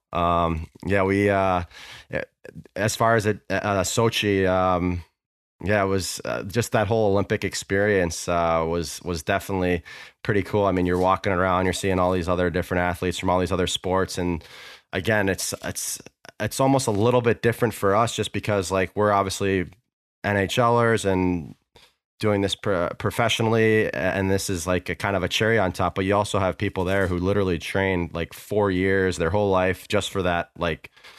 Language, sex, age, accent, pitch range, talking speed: English, male, 20-39, American, 85-100 Hz, 180 wpm